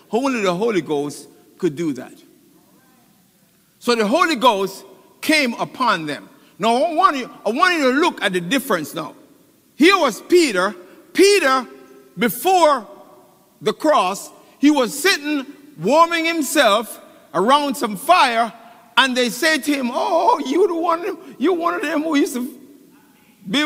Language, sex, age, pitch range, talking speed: English, male, 50-69, 220-330 Hz, 145 wpm